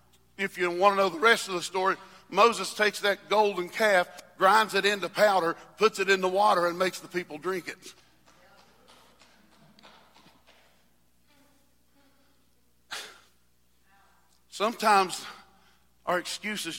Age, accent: 50-69, American